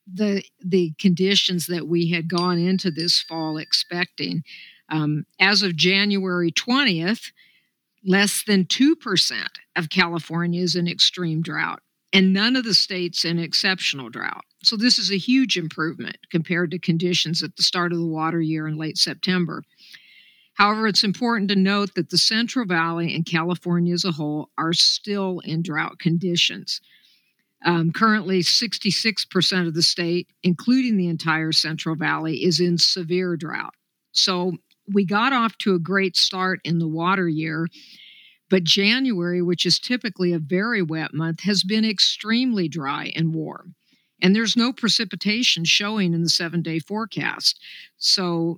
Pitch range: 165-200 Hz